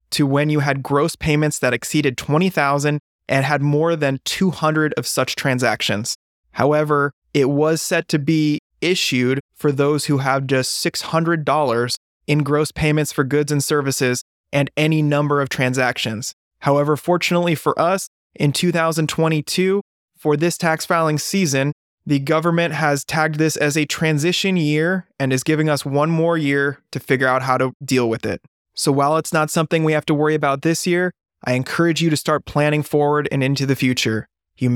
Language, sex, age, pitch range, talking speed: English, male, 20-39, 130-155 Hz, 175 wpm